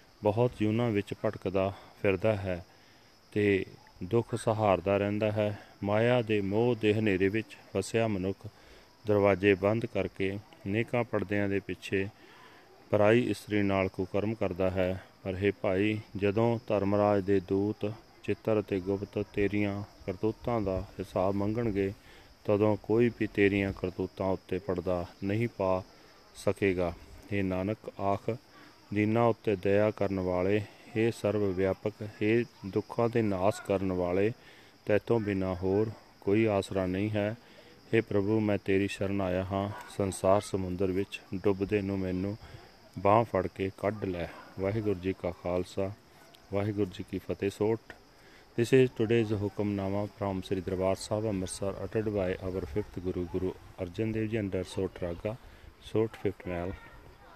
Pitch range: 95-110 Hz